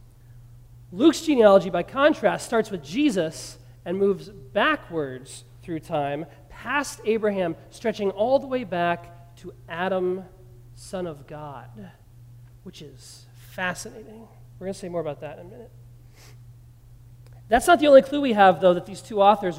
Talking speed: 150 wpm